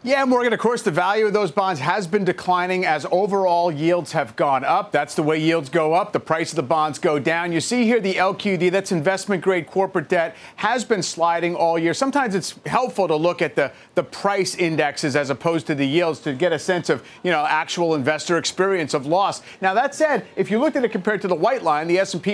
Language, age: English, 40-59